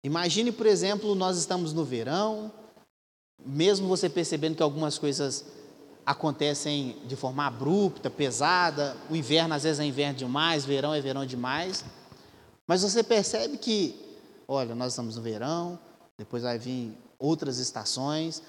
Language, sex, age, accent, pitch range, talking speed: Portuguese, male, 20-39, Brazilian, 130-180 Hz, 140 wpm